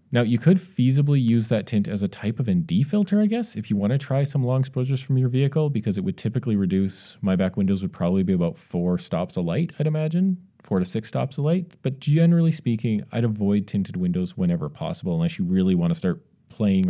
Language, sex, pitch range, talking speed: English, male, 110-170 Hz, 235 wpm